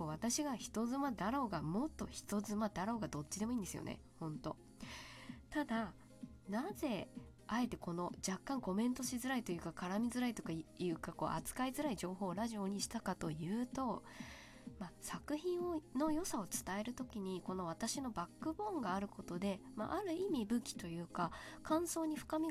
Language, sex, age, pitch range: Japanese, female, 20-39, 165-250 Hz